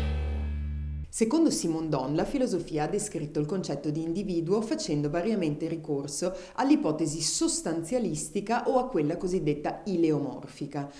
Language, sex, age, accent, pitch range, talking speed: Italian, female, 30-49, native, 155-225 Hz, 115 wpm